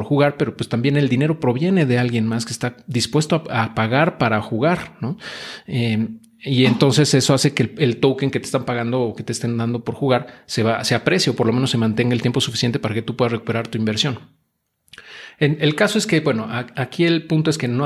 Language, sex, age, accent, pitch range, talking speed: Spanish, male, 40-59, Mexican, 115-145 Hz, 240 wpm